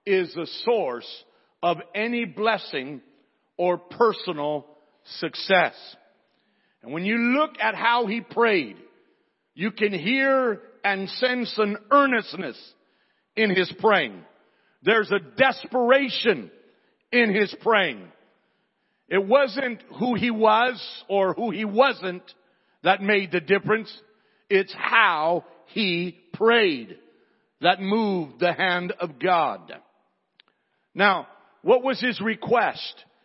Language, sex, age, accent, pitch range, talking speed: English, male, 50-69, American, 195-265 Hz, 110 wpm